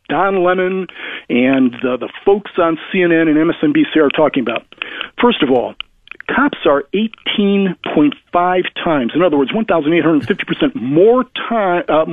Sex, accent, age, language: male, American, 50-69, English